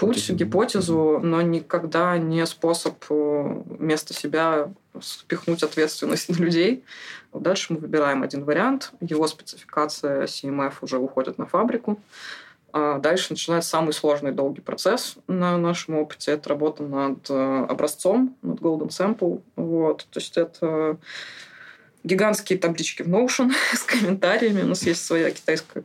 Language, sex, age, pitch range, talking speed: Russian, female, 20-39, 145-170 Hz, 130 wpm